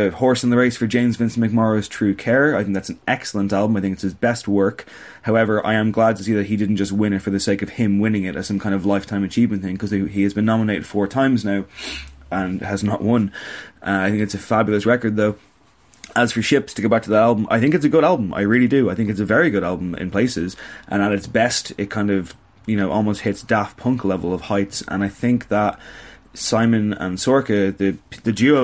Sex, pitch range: male, 100-115 Hz